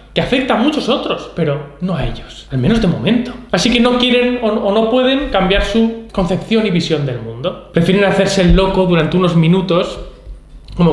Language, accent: Spanish, Spanish